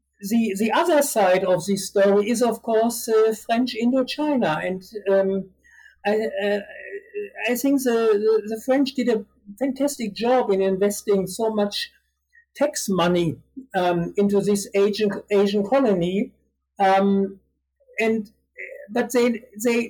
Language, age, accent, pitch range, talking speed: English, 60-79, German, 190-240 Hz, 130 wpm